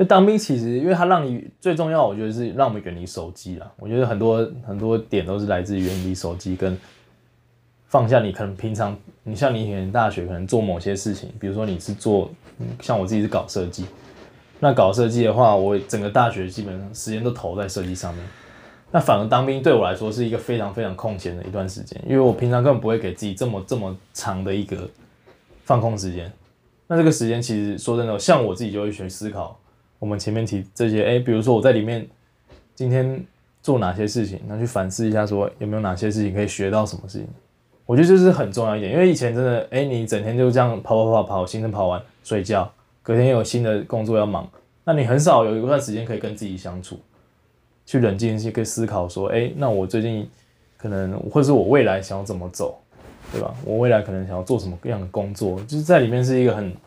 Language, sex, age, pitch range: English, male, 20-39, 95-120 Hz